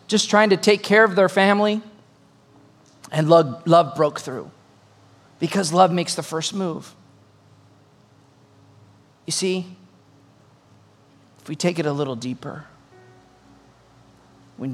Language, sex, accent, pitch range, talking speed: English, male, American, 115-165 Hz, 120 wpm